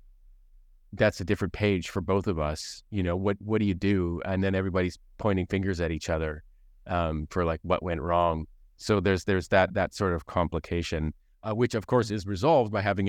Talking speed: 205 wpm